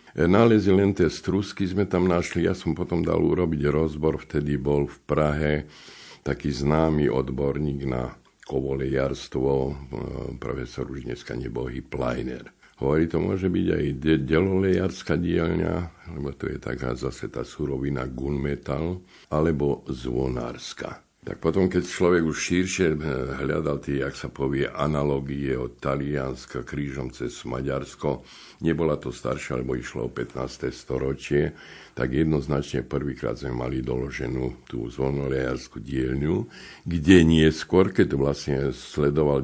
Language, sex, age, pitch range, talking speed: Slovak, male, 50-69, 65-80 Hz, 135 wpm